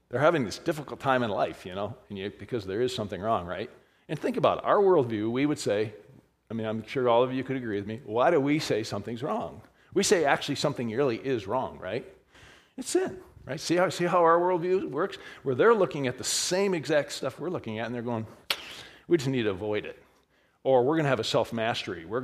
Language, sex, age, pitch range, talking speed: English, male, 40-59, 110-145 Hz, 245 wpm